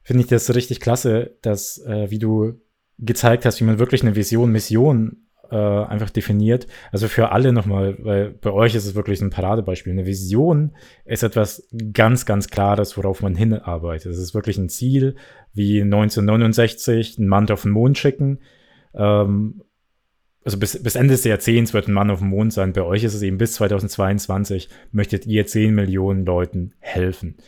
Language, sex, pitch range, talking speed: German, male, 100-115 Hz, 180 wpm